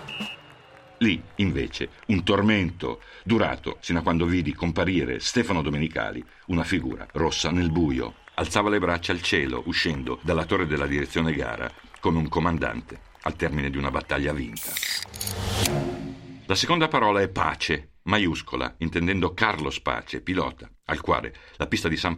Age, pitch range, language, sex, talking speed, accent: 60-79, 75-95 Hz, Italian, male, 145 wpm, native